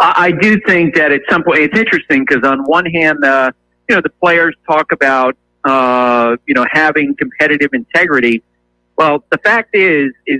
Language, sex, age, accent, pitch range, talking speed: English, male, 50-69, American, 130-180 Hz, 180 wpm